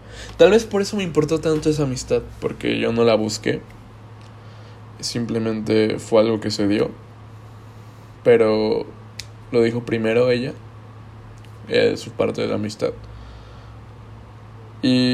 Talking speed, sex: 125 wpm, male